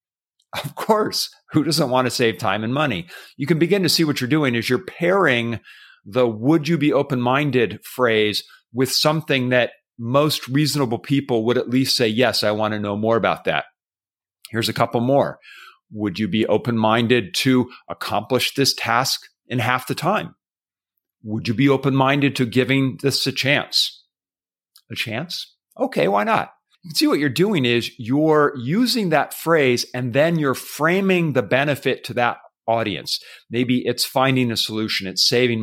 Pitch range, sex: 115-155 Hz, male